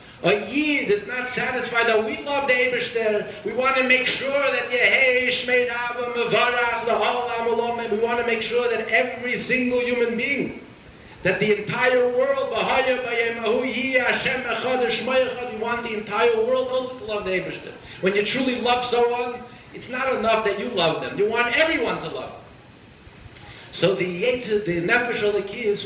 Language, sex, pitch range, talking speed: English, male, 180-245 Hz, 150 wpm